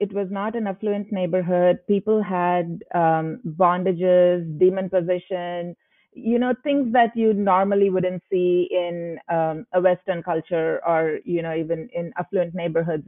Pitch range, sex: 170-190 Hz, female